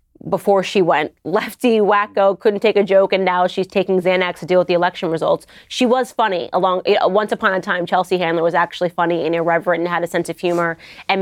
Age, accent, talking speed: 20-39, American, 225 wpm